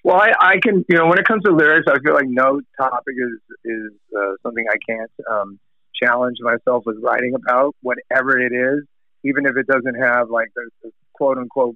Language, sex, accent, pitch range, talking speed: English, male, American, 120-145 Hz, 205 wpm